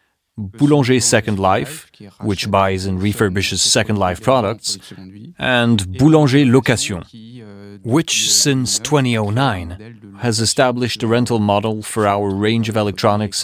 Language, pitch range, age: French, 105-130 Hz, 30-49